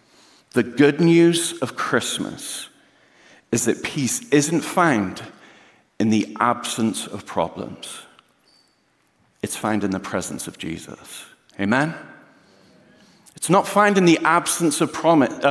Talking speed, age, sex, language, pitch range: 120 wpm, 50-69, male, English, 115-165 Hz